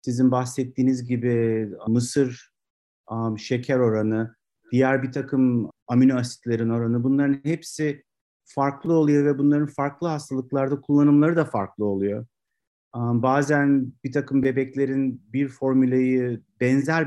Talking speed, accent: 115 wpm, native